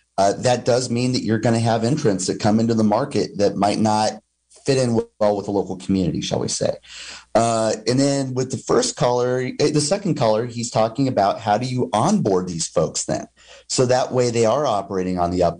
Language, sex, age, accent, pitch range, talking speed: English, male, 30-49, American, 105-140 Hz, 225 wpm